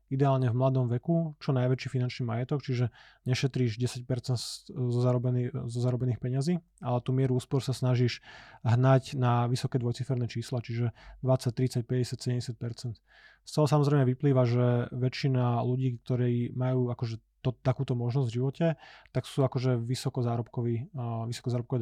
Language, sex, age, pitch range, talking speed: Slovak, male, 20-39, 120-135 Hz, 130 wpm